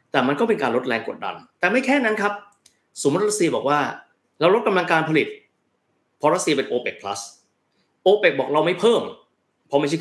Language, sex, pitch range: Thai, male, 125-180 Hz